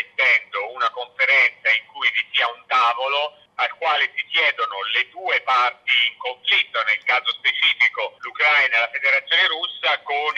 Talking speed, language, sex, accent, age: 150 wpm, Italian, male, native, 50-69